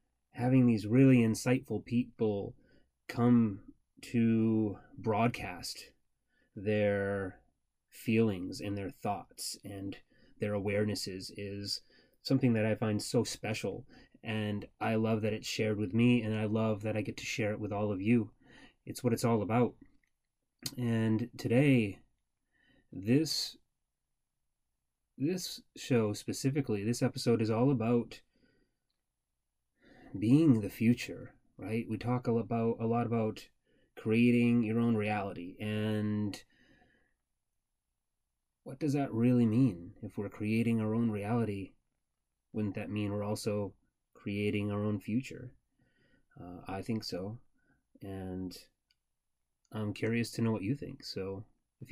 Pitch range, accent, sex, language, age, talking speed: 105-120 Hz, American, male, English, 30-49, 125 wpm